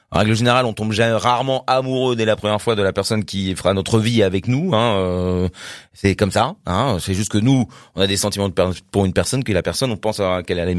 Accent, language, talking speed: French, French, 265 wpm